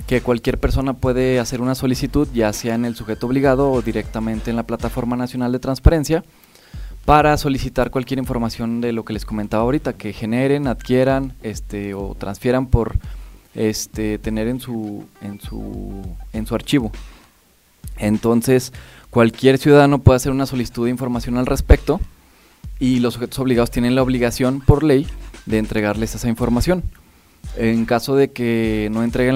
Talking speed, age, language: 155 wpm, 20-39, Spanish